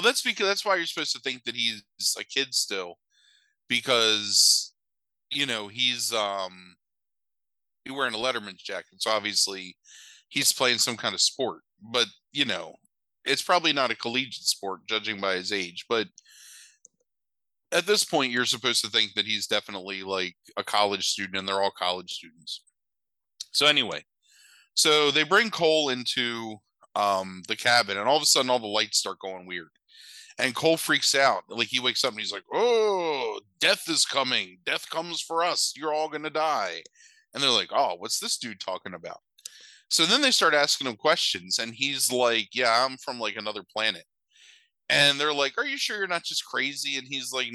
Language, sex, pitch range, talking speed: English, male, 105-155 Hz, 185 wpm